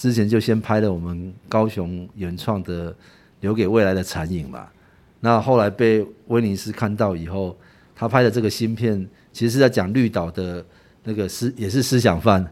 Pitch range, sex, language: 90-115 Hz, male, Chinese